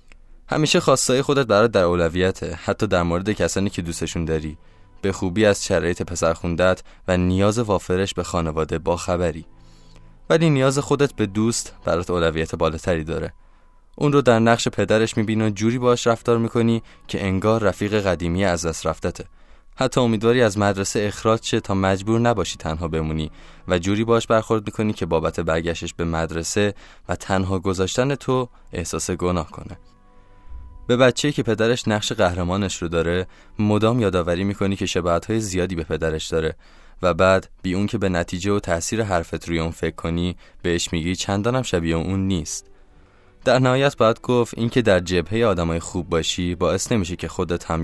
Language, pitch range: Persian, 85-110 Hz